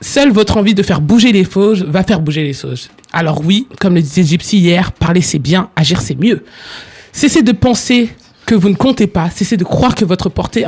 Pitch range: 155-210 Hz